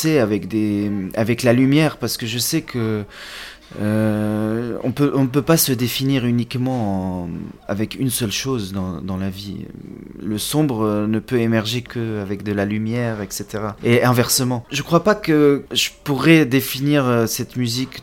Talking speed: 175 wpm